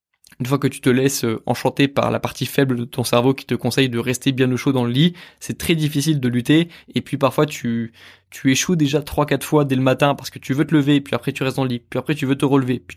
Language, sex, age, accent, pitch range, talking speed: French, male, 20-39, French, 125-150 Hz, 285 wpm